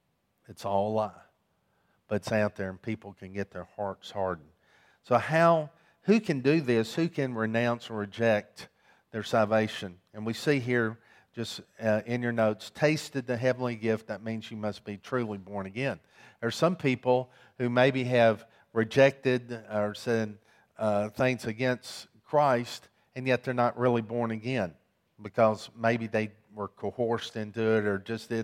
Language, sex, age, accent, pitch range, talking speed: English, male, 50-69, American, 110-125 Hz, 170 wpm